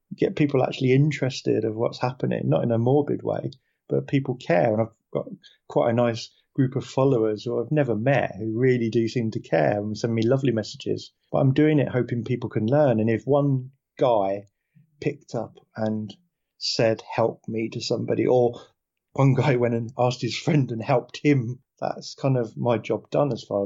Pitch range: 110-130 Hz